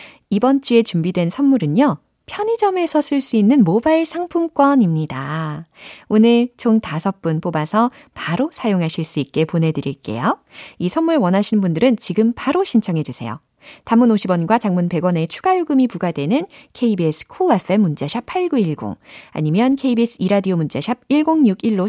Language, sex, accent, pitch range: Korean, female, native, 160-250 Hz